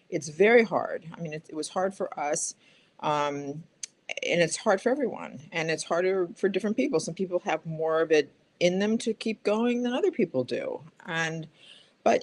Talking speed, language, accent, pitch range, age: 195 wpm, English, American, 155-190 Hz, 50-69